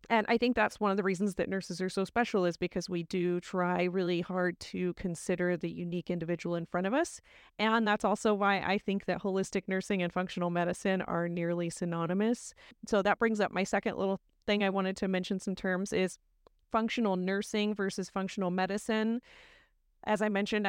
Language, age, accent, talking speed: English, 30-49, American, 195 wpm